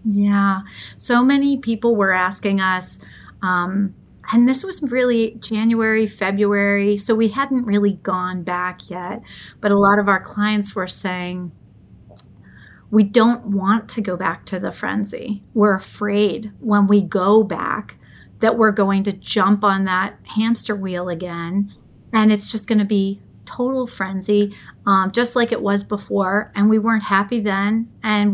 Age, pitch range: 40-59, 195-220 Hz